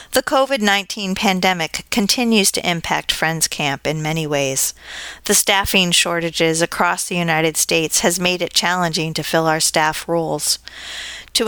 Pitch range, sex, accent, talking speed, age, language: 160-190 Hz, female, American, 145 wpm, 40-59, English